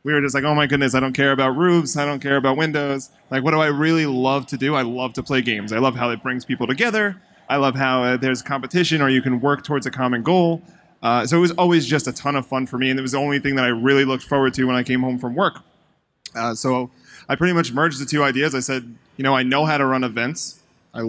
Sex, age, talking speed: male, 20-39, 285 wpm